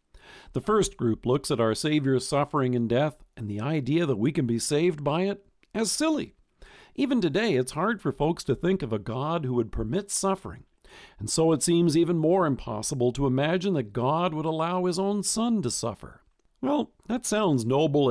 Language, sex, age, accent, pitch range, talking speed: English, male, 50-69, American, 125-180 Hz, 195 wpm